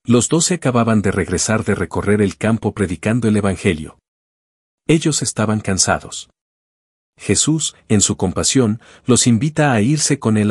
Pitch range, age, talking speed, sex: 95-125 Hz, 50-69, 150 wpm, male